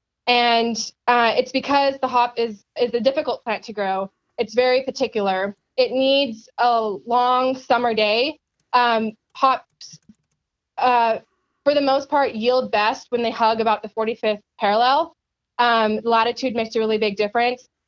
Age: 20-39